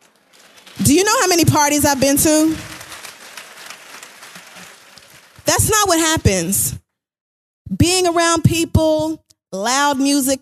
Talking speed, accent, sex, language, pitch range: 105 wpm, American, female, English, 230-280 Hz